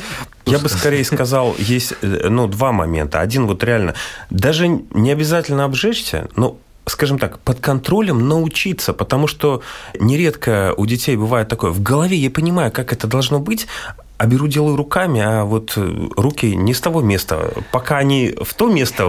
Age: 30-49